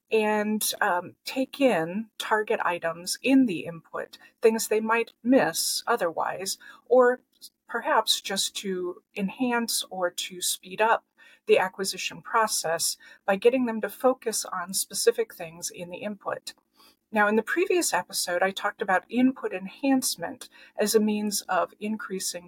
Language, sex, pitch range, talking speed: English, female, 185-265 Hz, 140 wpm